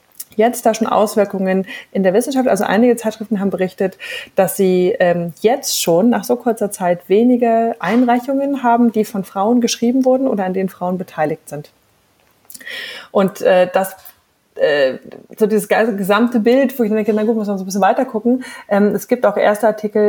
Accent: German